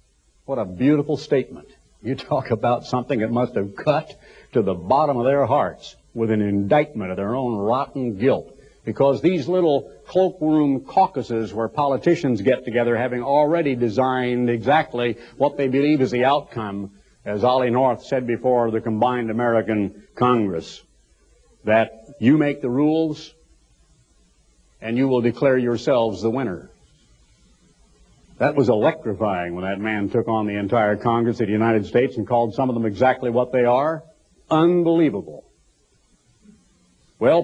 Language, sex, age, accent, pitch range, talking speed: English, male, 60-79, American, 115-160 Hz, 145 wpm